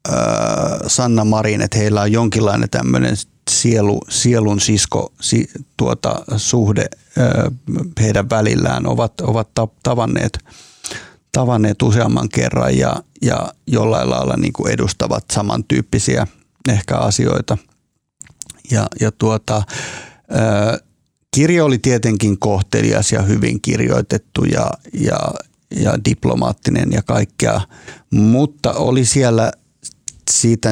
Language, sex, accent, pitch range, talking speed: Finnish, male, native, 100-120 Hz, 100 wpm